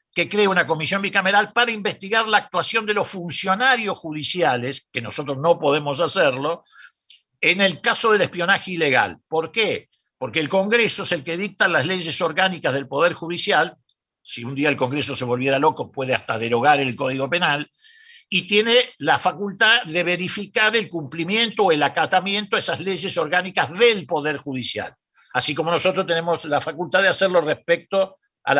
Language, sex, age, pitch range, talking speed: Spanish, male, 60-79, 145-195 Hz, 170 wpm